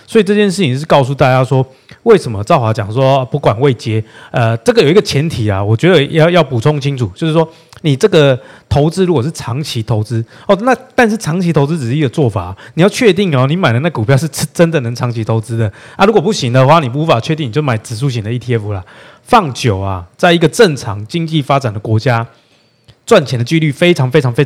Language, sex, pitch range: Chinese, male, 120-170 Hz